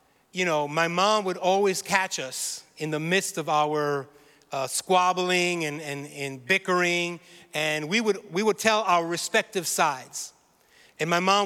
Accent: American